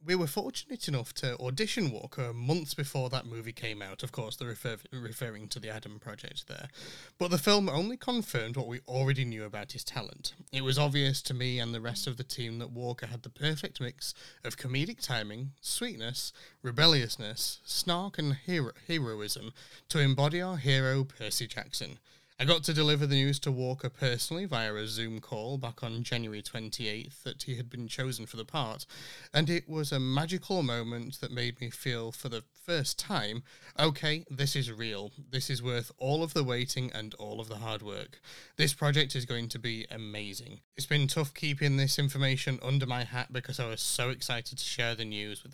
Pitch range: 120-145 Hz